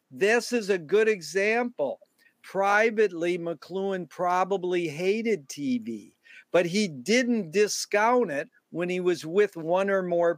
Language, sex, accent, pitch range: English, male, American, 180-225 Hz